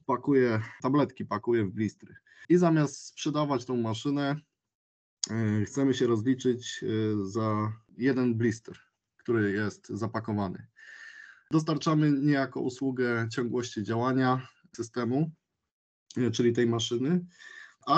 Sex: male